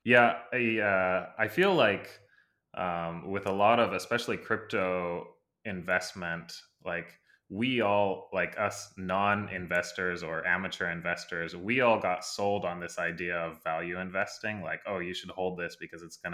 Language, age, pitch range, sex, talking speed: English, 20-39, 85-95 Hz, male, 160 wpm